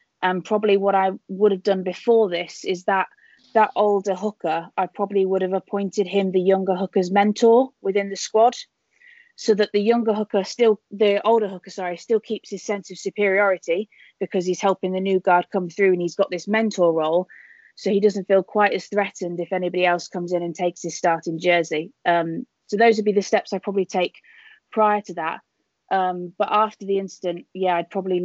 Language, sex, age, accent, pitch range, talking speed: English, female, 20-39, British, 185-210 Hz, 205 wpm